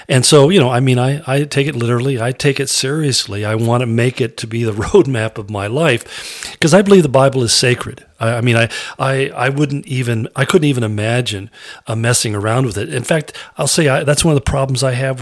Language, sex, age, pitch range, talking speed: English, male, 40-59, 110-135 Hz, 250 wpm